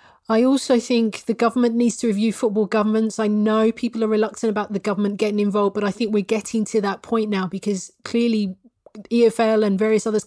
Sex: female